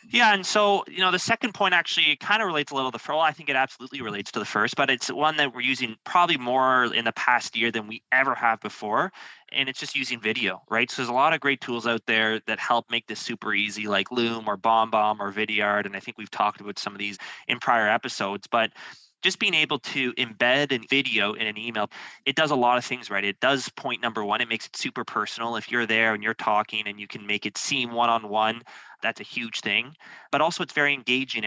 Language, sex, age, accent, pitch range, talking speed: English, male, 20-39, American, 105-130 Hz, 250 wpm